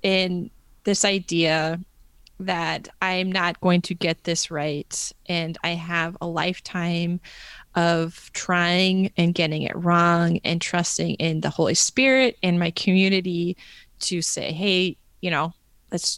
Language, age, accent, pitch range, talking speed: English, 20-39, American, 170-200 Hz, 135 wpm